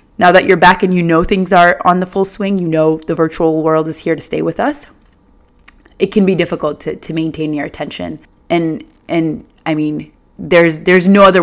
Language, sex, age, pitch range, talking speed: English, female, 20-39, 150-175 Hz, 215 wpm